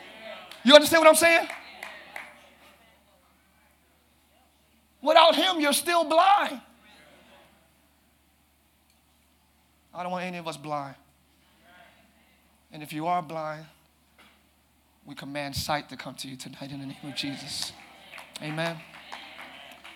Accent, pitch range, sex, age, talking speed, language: American, 145-235 Hz, male, 30-49, 110 wpm, English